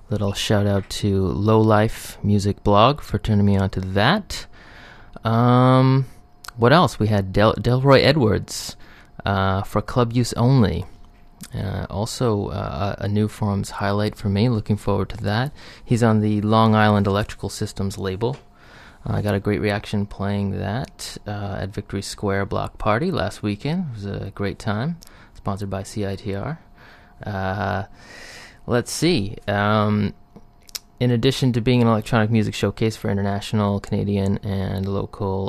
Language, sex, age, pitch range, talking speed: English, male, 30-49, 100-115 Hz, 150 wpm